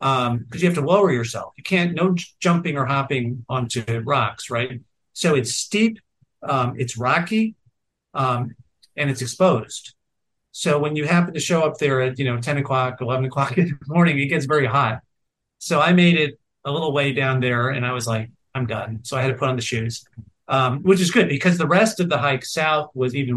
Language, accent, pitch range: English, American, 120-155 Hz